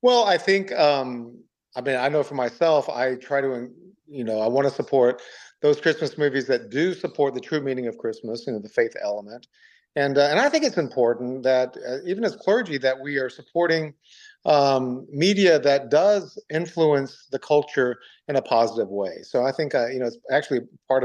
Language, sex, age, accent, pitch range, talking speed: English, male, 50-69, American, 120-155 Hz, 200 wpm